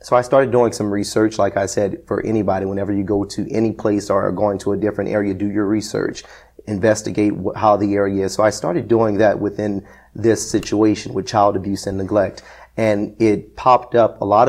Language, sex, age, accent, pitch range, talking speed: English, male, 30-49, American, 100-115 Hz, 210 wpm